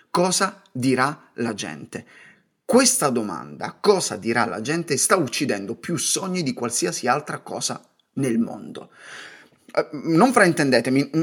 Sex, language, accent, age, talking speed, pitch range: male, Italian, native, 30-49, 120 wpm, 110-155 Hz